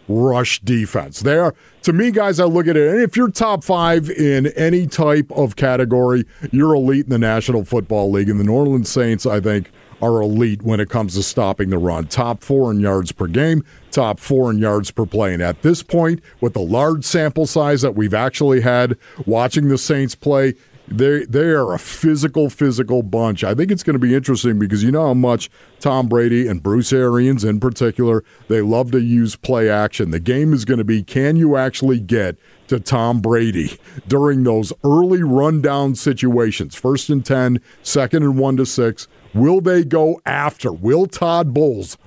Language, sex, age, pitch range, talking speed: English, male, 50-69, 110-145 Hz, 195 wpm